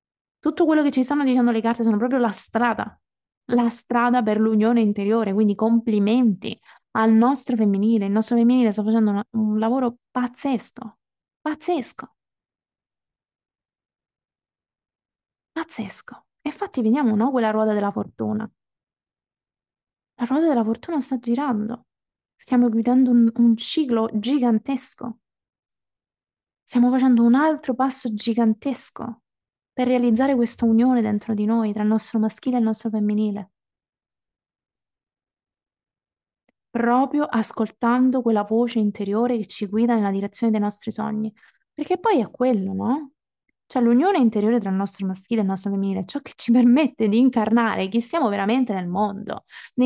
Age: 20-39